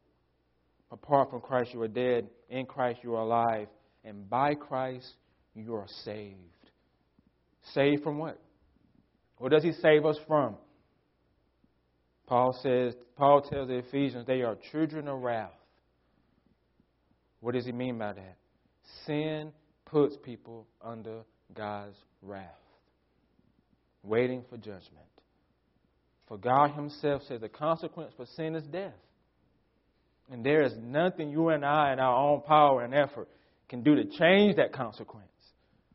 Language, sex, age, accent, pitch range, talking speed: English, male, 40-59, American, 105-150 Hz, 135 wpm